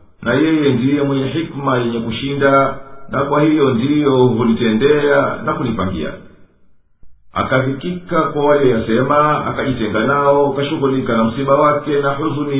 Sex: male